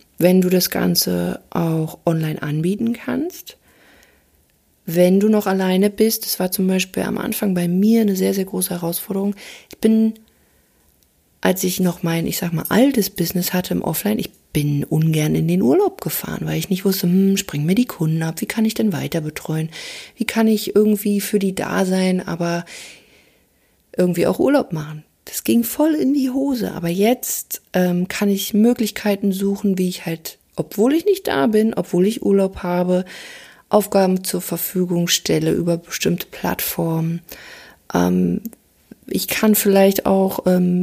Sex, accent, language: female, German, German